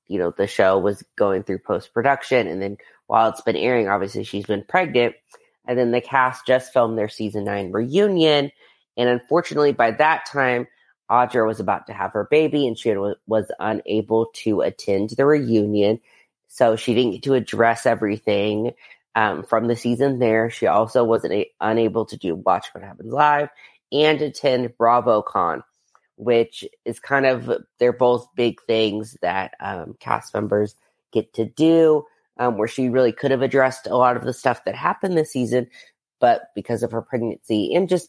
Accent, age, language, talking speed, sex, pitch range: American, 30-49, English, 175 wpm, female, 110-135 Hz